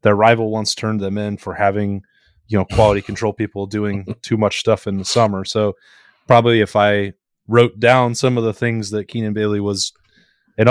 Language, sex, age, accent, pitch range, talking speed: English, male, 20-39, American, 105-120 Hz, 195 wpm